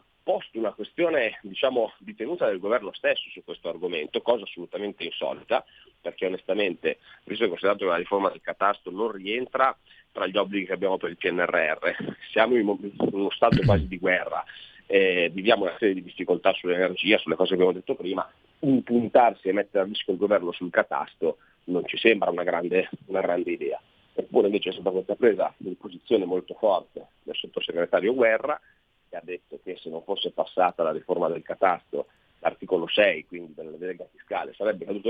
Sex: male